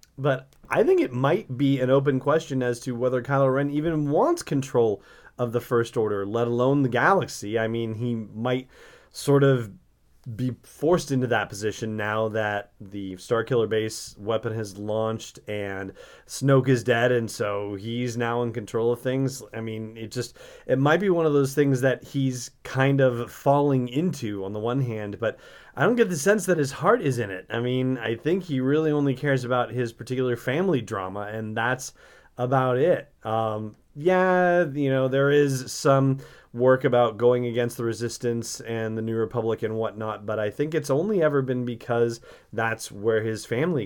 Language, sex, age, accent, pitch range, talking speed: English, male, 30-49, American, 110-135 Hz, 185 wpm